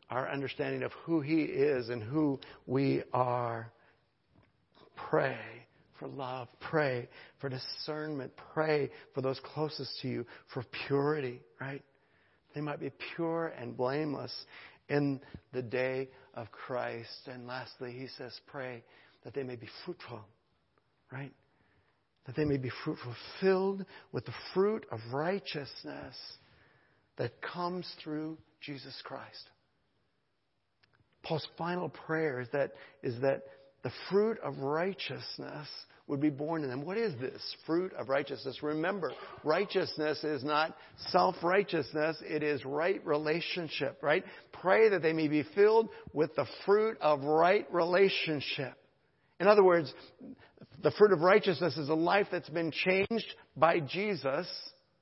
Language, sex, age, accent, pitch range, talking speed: English, male, 60-79, American, 135-175 Hz, 130 wpm